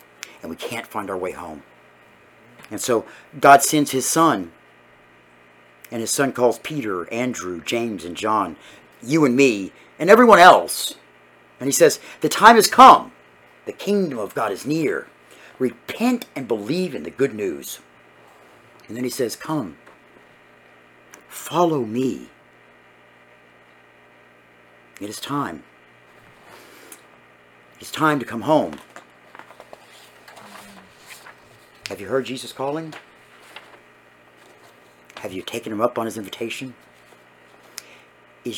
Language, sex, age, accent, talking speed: English, male, 50-69, American, 120 wpm